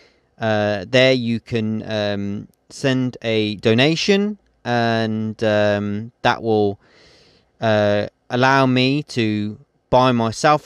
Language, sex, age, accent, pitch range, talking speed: English, male, 30-49, British, 105-130 Hz, 100 wpm